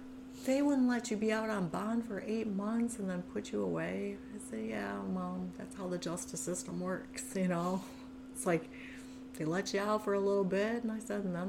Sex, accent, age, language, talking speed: female, American, 40-59, English, 225 wpm